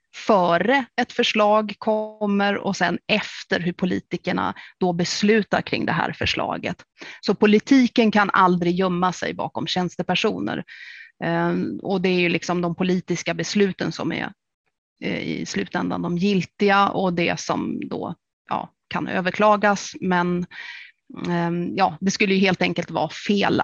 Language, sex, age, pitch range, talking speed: Swedish, female, 30-49, 175-210 Hz, 135 wpm